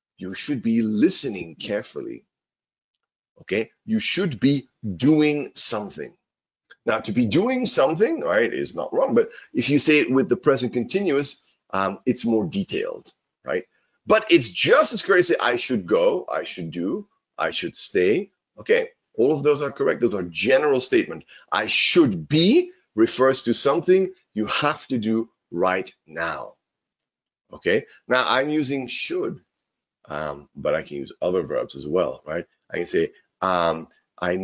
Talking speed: 155 wpm